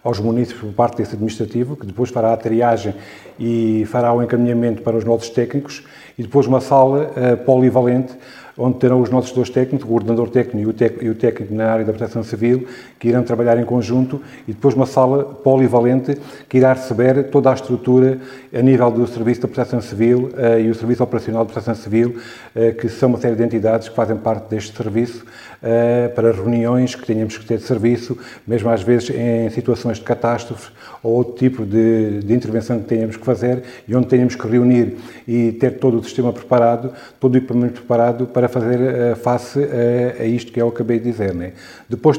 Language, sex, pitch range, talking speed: Portuguese, male, 115-125 Hz, 195 wpm